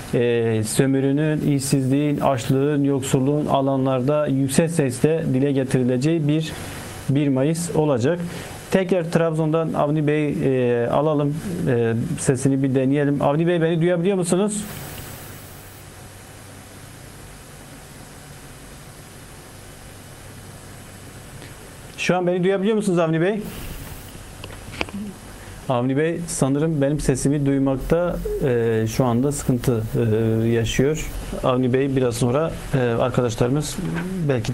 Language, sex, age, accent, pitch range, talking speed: Turkish, male, 40-59, native, 120-145 Hz, 90 wpm